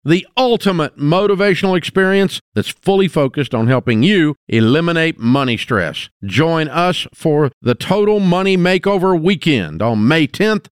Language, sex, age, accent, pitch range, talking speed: English, male, 50-69, American, 115-175 Hz, 135 wpm